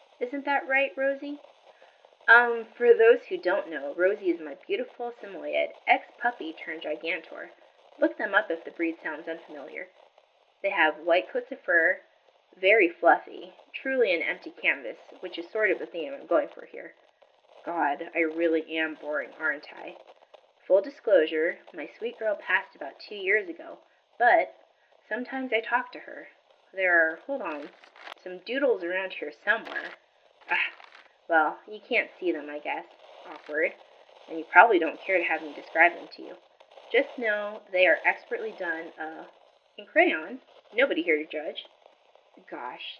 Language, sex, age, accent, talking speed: English, female, 20-39, American, 160 wpm